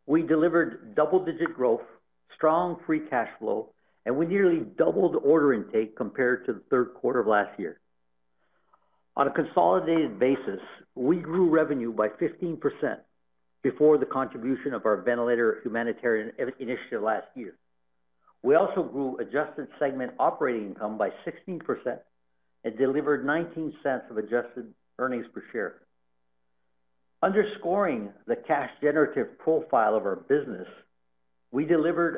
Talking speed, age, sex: 125 wpm, 60-79, male